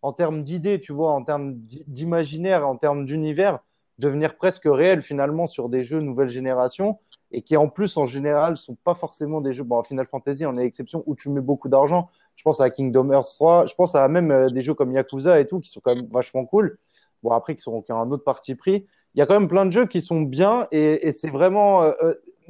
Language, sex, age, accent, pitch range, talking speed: French, male, 20-39, French, 140-180 Hz, 245 wpm